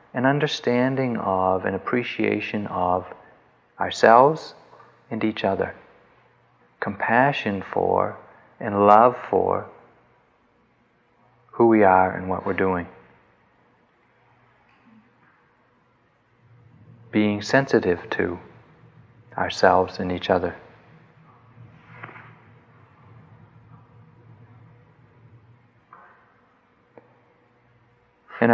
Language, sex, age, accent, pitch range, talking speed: English, male, 40-59, American, 100-125 Hz, 65 wpm